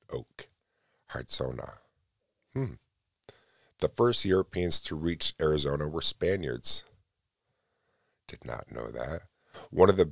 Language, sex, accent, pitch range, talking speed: English, male, American, 70-85 Hz, 105 wpm